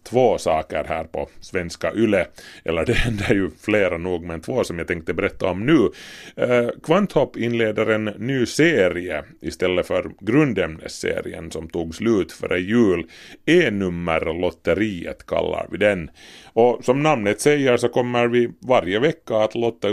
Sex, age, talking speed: male, 30-49, 155 wpm